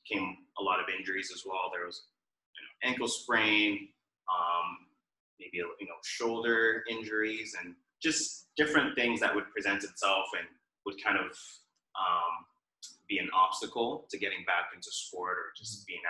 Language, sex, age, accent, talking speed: English, male, 30-49, American, 155 wpm